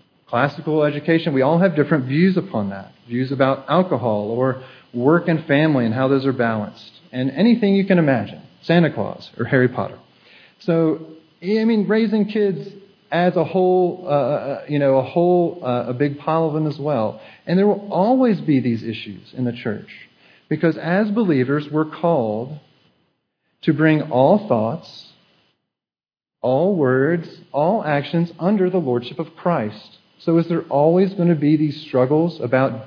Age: 40-59